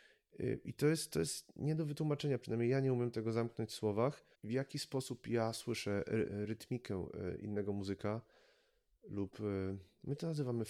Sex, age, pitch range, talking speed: male, 30-49, 105-125 Hz, 150 wpm